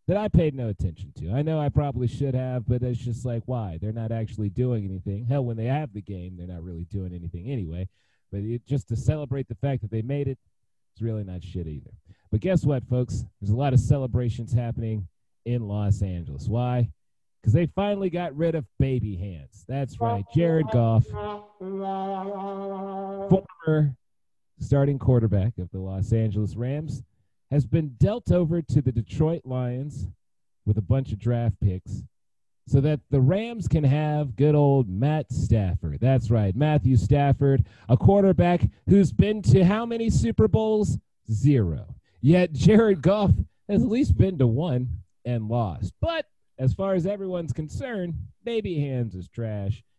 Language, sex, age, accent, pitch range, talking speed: English, male, 40-59, American, 105-145 Hz, 170 wpm